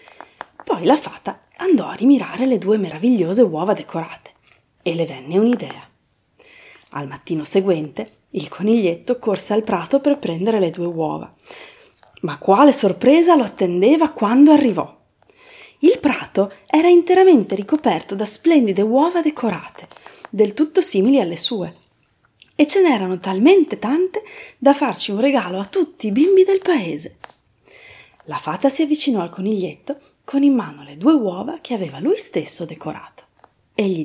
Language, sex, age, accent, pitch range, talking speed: Italian, female, 30-49, native, 180-295 Hz, 145 wpm